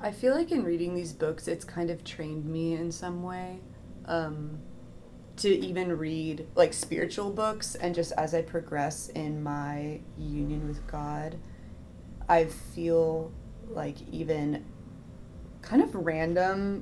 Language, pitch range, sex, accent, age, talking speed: English, 150-180 Hz, female, American, 20-39, 140 wpm